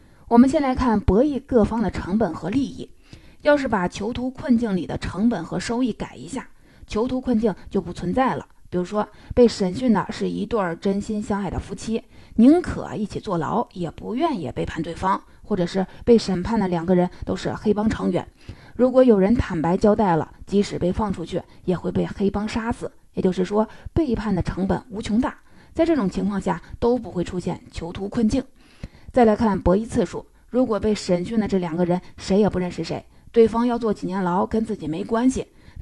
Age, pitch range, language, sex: 20-39, 185-230 Hz, Chinese, female